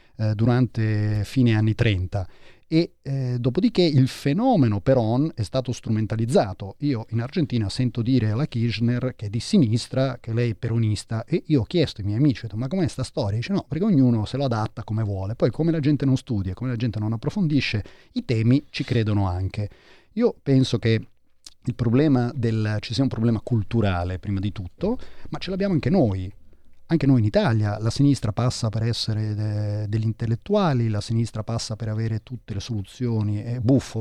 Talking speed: 190 wpm